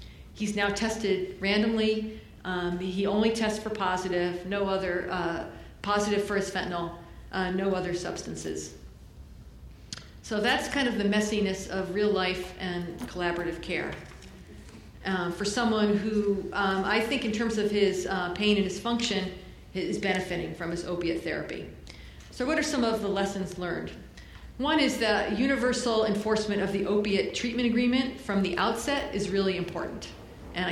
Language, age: English, 40-59